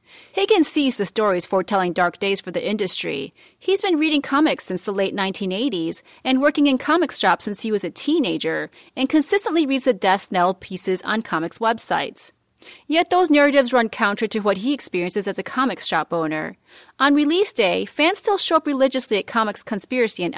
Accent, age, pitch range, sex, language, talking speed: American, 30-49, 195-300 Hz, female, English, 190 wpm